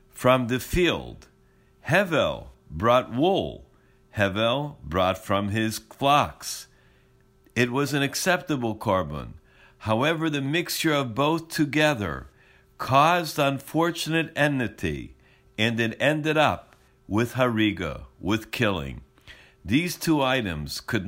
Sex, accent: male, American